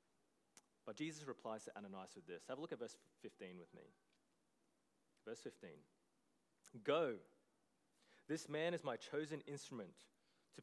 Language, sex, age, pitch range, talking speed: English, male, 30-49, 120-160 Hz, 140 wpm